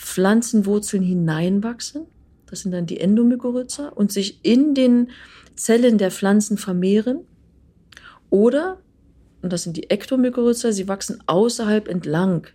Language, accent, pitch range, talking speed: German, German, 180-225 Hz, 120 wpm